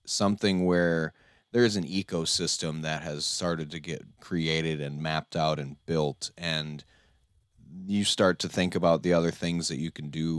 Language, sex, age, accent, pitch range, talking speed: English, male, 30-49, American, 80-100 Hz, 175 wpm